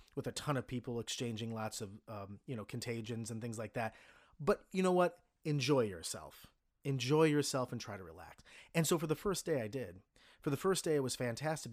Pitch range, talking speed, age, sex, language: 115-150 Hz, 220 wpm, 30-49, male, English